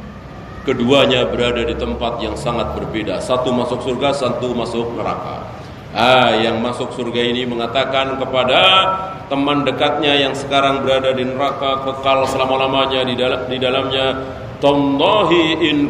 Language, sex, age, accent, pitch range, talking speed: Indonesian, male, 40-59, native, 125-150 Hz, 130 wpm